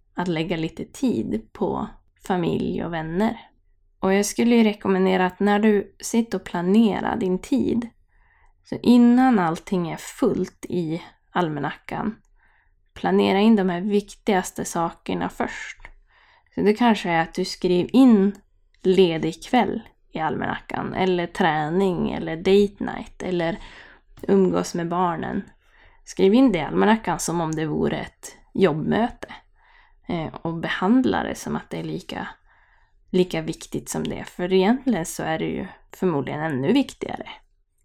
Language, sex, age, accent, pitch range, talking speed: Swedish, female, 20-39, native, 170-215 Hz, 140 wpm